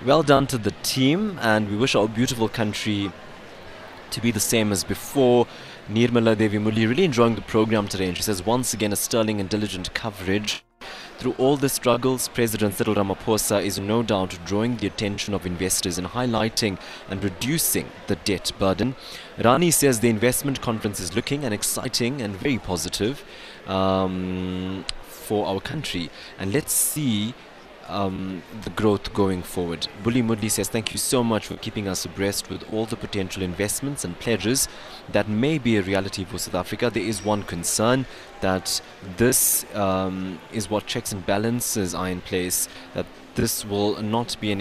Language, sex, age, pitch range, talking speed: English, male, 20-39, 95-120 Hz, 170 wpm